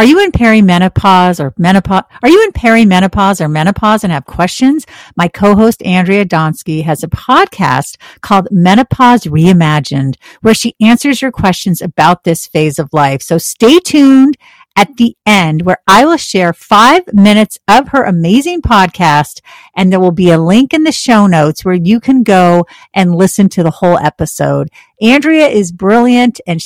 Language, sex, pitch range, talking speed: English, female, 175-245 Hz, 170 wpm